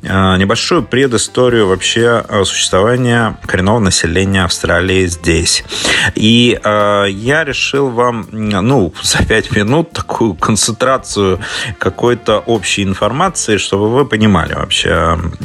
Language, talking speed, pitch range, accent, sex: Russian, 100 wpm, 95-120 Hz, native, male